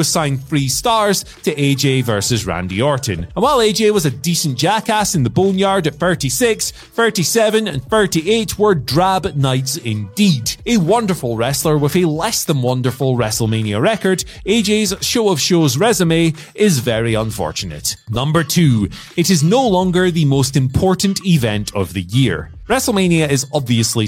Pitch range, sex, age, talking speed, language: 125-195 Hz, male, 30-49, 150 wpm, English